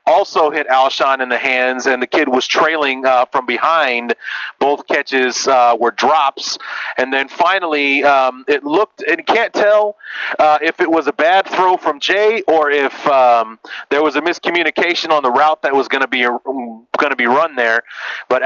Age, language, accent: 30-49, English, American